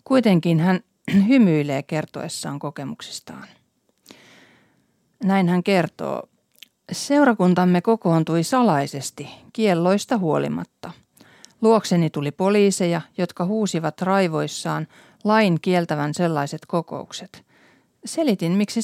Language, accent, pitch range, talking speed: Finnish, native, 155-220 Hz, 80 wpm